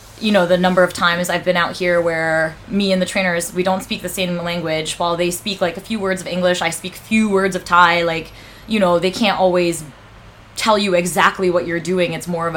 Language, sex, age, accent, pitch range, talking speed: English, female, 20-39, American, 160-185 Hz, 245 wpm